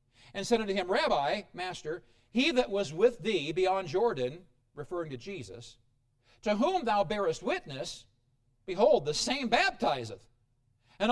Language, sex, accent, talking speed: English, male, American, 140 wpm